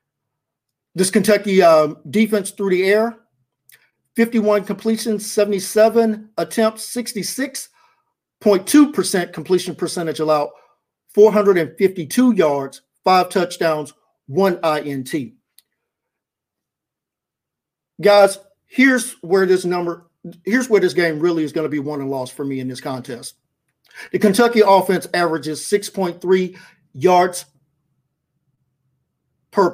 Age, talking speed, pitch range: 50-69, 100 wpm, 155-200 Hz